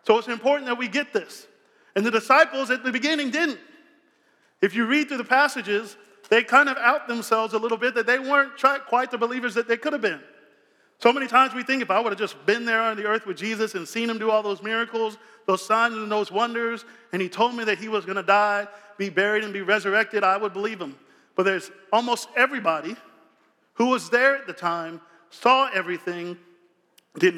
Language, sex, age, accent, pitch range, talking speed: English, male, 40-59, American, 200-255 Hz, 220 wpm